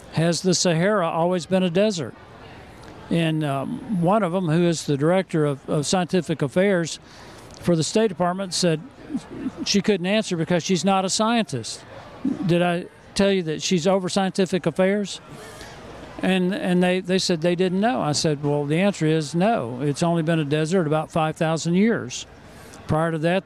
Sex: male